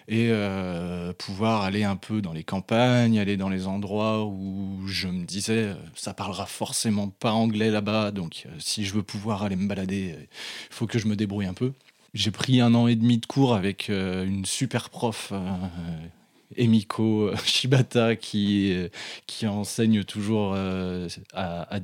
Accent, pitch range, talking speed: French, 100-125 Hz, 185 wpm